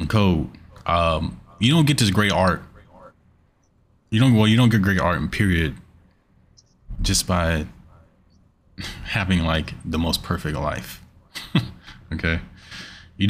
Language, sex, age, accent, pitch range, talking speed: English, male, 20-39, American, 85-100 Hz, 125 wpm